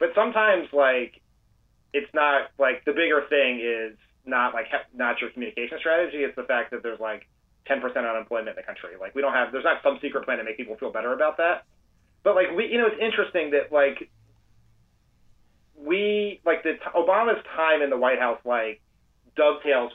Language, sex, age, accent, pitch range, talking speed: English, male, 30-49, American, 120-145 Hz, 195 wpm